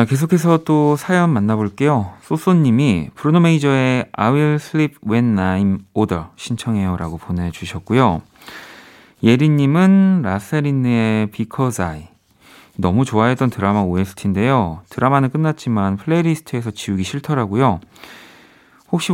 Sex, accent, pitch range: male, native, 95-140 Hz